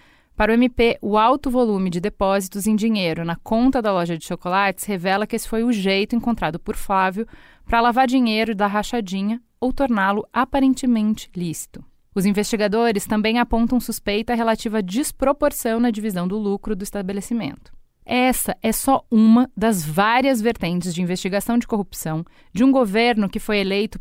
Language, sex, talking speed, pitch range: Portuguese, female, 160 wpm, 195-235 Hz